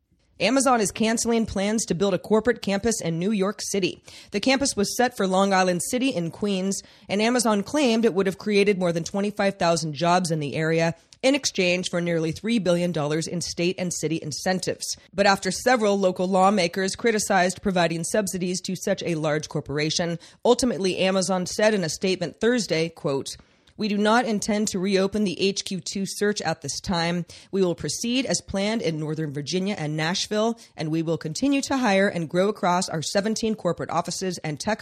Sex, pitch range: female, 170-220 Hz